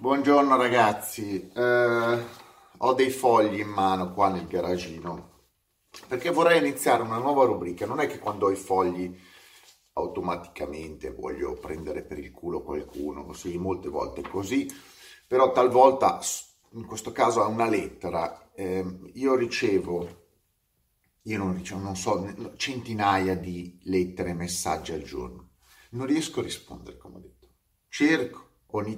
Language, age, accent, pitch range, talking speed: Italian, 30-49, native, 90-125 Hz, 140 wpm